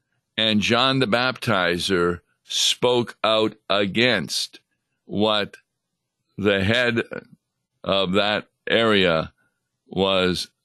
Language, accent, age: English, American, 60-79